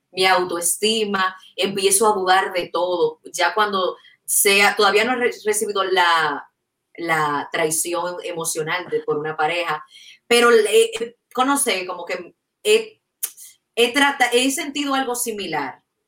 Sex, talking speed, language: female, 130 wpm, Spanish